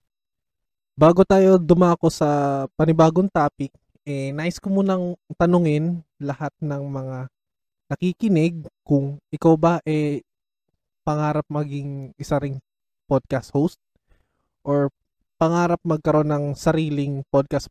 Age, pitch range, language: 20-39, 140-180 Hz, Filipino